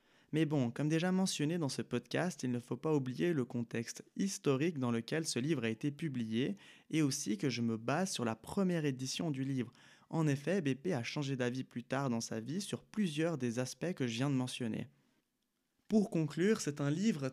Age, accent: 20-39, French